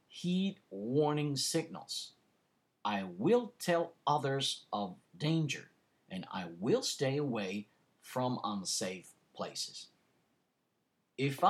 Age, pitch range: 50-69, 120-175 Hz